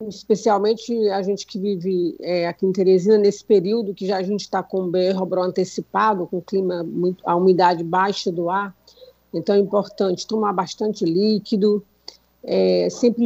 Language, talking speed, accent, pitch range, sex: Portuguese, 170 wpm, Brazilian, 185-205 Hz, female